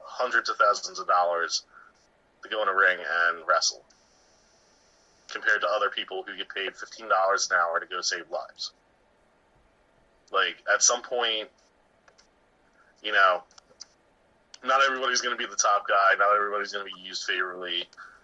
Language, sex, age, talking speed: English, male, 20-39, 155 wpm